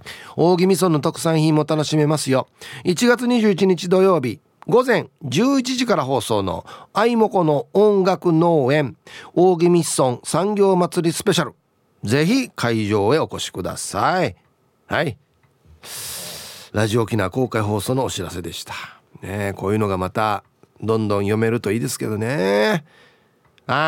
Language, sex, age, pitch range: Japanese, male, 40-59, 115-195 Hz